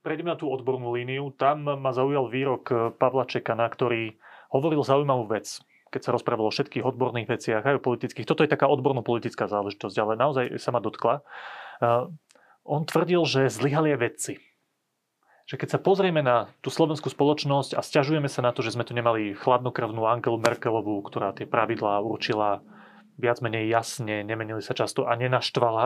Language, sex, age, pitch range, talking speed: Slovak, male, 30-49, 120-145 Hz, 165 wpm